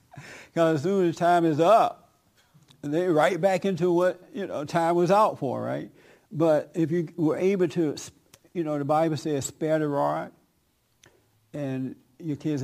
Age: 60-79